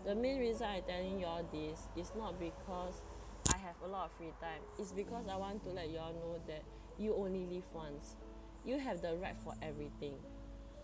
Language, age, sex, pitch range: English, 20-39, female, 155-210 Hz